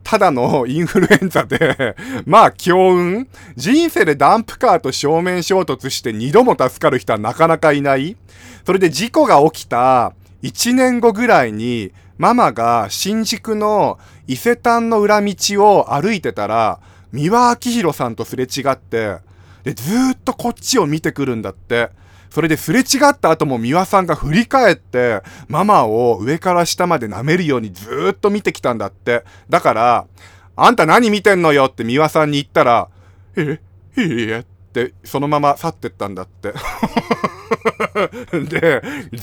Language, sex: Japanese, male